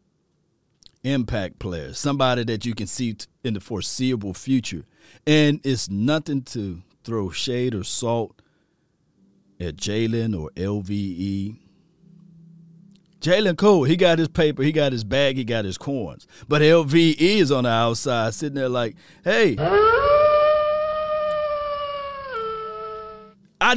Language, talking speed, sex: English, 120 wpm, male